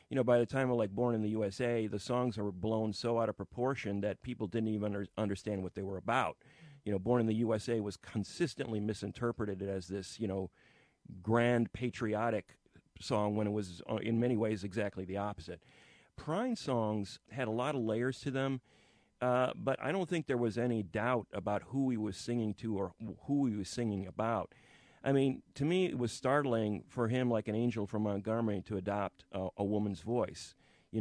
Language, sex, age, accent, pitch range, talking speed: English, male, 40-59, American, 105-125 Hz, 205 wpm